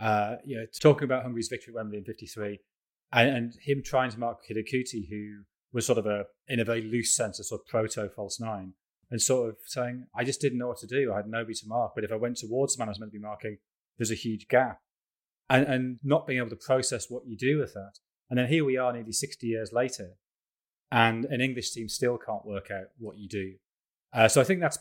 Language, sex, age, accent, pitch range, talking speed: English, male, 30-49, British, 105-125 Hz, 250 wpm